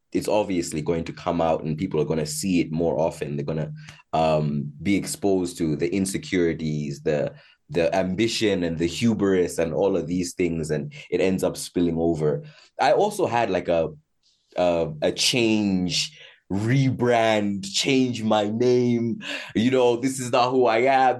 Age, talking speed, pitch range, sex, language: 20-39, 170 wpm, 85-120 Hz, male, English